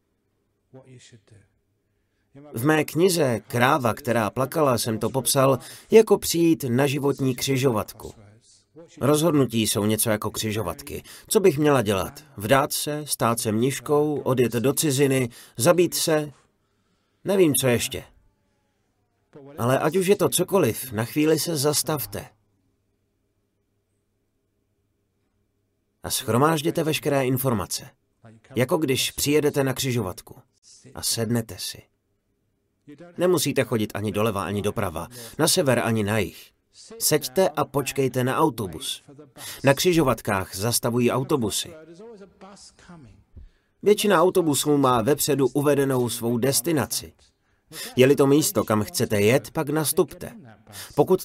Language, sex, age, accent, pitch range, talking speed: Czech, male, 40-59, native, 105-150 Hz, 110 wpm